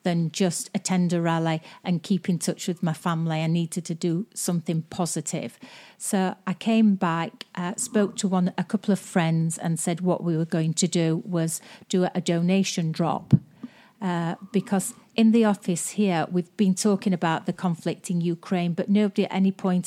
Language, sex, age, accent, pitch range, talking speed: English, female, 40-59, British, 170-195 Hz, 185 wpm